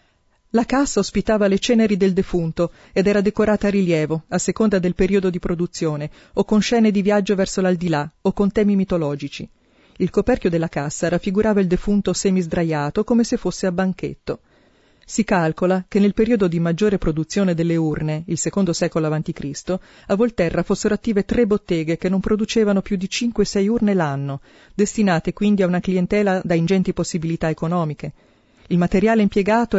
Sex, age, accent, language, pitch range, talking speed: female, 40-59, native, Italian, 170-205 Hz, 165 wpm